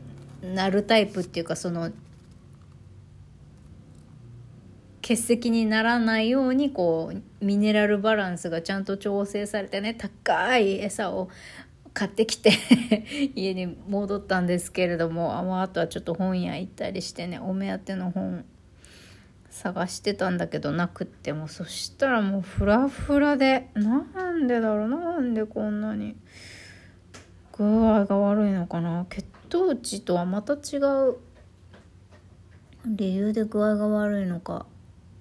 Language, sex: Japanese, female